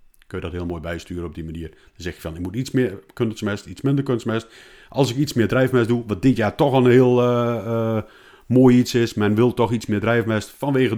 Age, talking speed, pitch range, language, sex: 40-59, 245 wpm, 100-125 Hz, Dutch, male